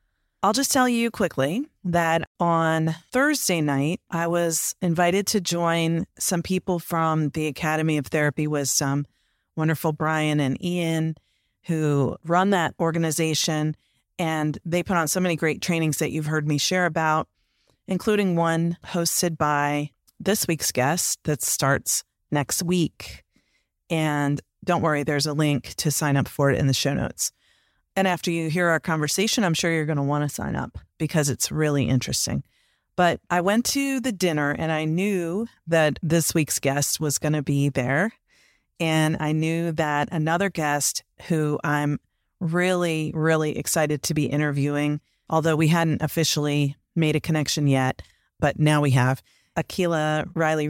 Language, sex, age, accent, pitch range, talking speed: English, female, 30-49, American, 145-170 Hz, 160 wpm